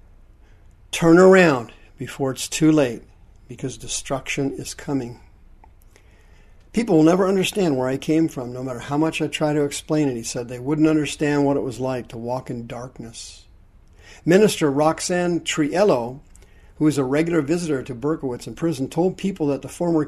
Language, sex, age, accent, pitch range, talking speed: English, male, 50-69, American, 105-155 Hz, 170 wpm